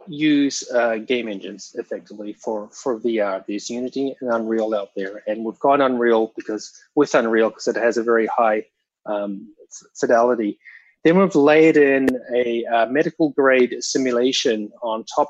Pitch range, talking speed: 115-145 Hz, 155 wpm